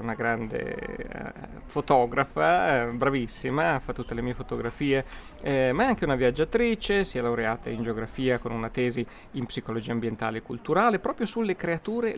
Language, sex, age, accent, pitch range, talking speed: Italian, male, 30-49, native, 125-170 Hz, 155 wpm